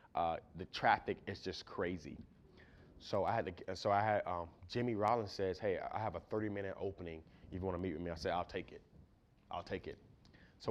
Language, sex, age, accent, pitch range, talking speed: English, male, 20-39, American, 95-115 Hz, 220 wpm